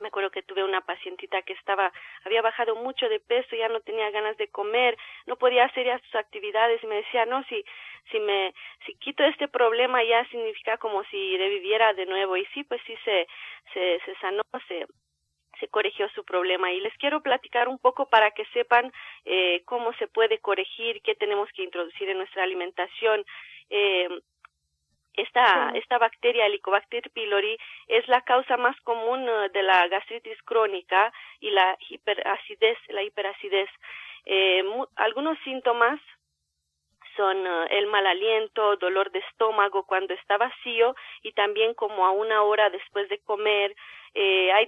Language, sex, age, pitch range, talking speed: Spanish, female, 30-49, 190-245 Hz, 165 wpm